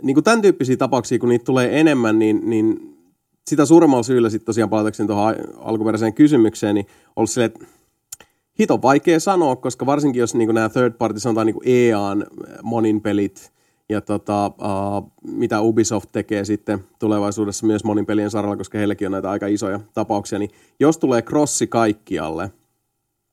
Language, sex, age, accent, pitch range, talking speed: Finnish, male, 30-49, native, 105-135 Hz, 150 wpm